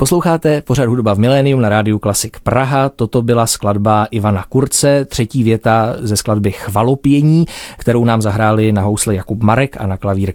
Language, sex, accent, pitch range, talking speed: Czech, male, native, 105-130 Hz, 170 wpm